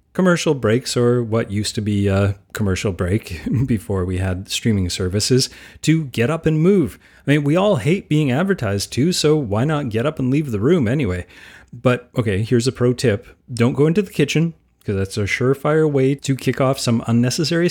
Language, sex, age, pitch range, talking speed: English, male, 30-49, 110-145 Hz, 200 wpm